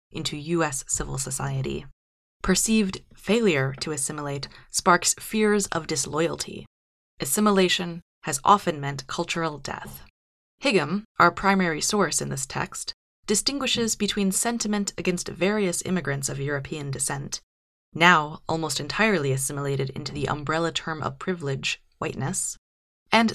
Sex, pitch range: female, 140-190 Hz